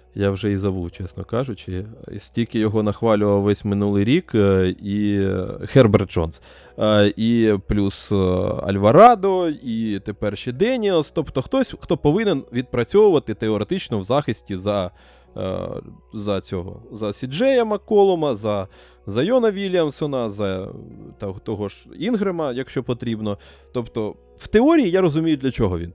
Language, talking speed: Ukrainian, 125 wpm